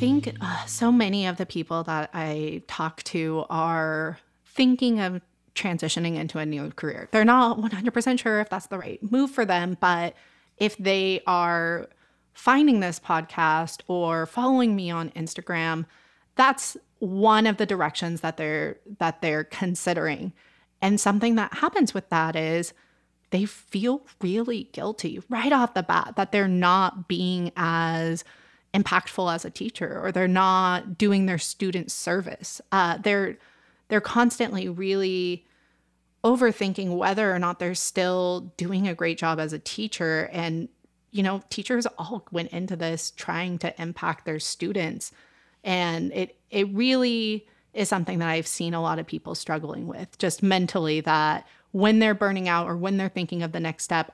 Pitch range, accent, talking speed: 165-210 Hz, American, 160 wpm